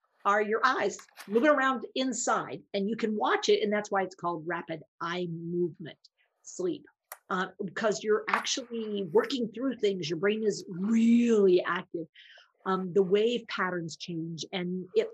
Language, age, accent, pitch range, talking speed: English, 50-69, American, 180-225 Hz, 155 wpm